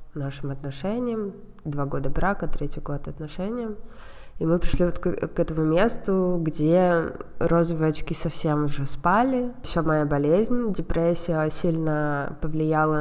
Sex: female